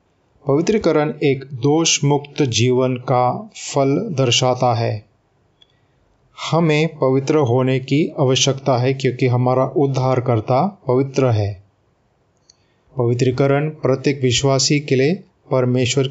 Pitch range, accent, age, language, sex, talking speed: 120-145 Hz, native, 30-49, Hindi, male, 95 wpm